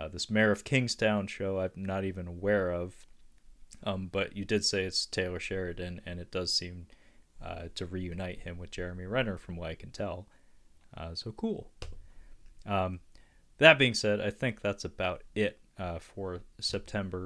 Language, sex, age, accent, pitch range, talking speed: English, male, 30-49, American, 90-105 Hz, 175 wpm